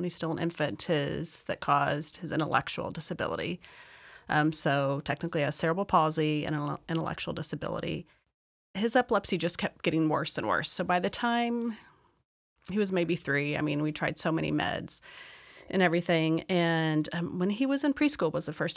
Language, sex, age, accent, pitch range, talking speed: English, female, 30-49, American, 155-190 Hz, 175 wpm